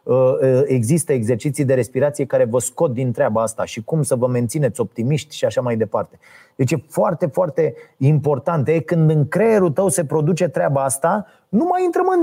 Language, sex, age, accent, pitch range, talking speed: Romanian, male, 30-49, native, 140-225 Hz, 185 wpm